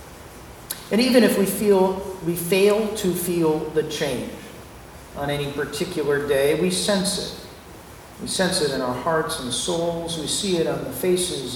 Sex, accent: male, American